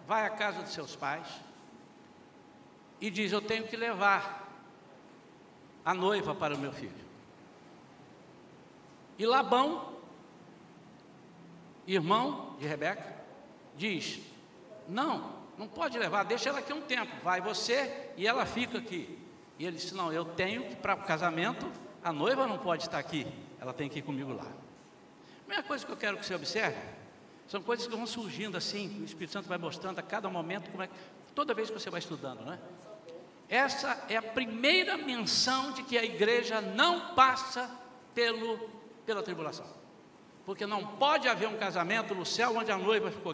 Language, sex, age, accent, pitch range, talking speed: Portuguese, male, 60-79, Brazilian, 175-240 Hz, 165 wpm